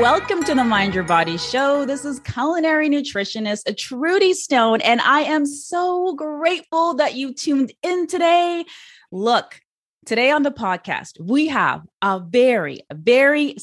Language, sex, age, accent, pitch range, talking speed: English, female, 20-39, American, 200-300 Hz, 145 wpm